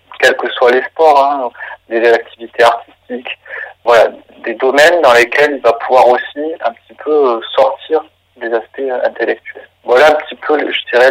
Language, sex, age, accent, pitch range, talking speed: French, male, 40-59, French, 125-150 Hz, 175 wpm